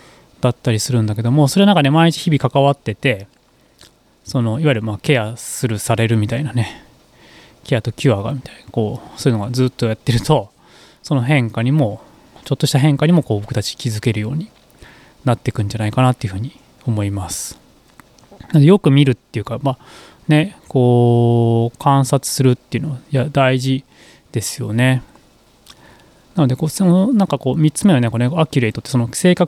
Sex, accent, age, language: male, native, 20-39, Japanese